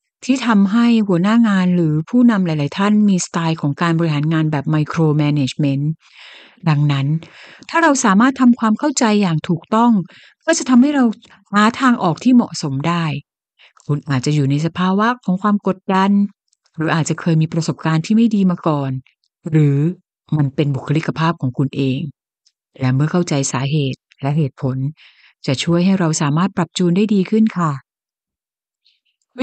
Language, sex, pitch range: Thai, female, 160-235 Hz